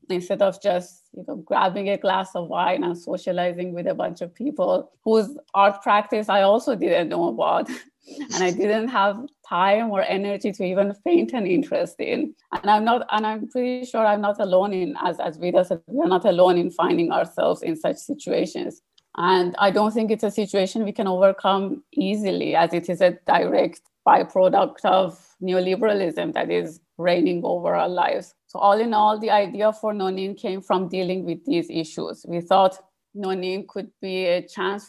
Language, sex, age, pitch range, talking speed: Finnish, female, 30-49, 185-215 Hz, 180 wpm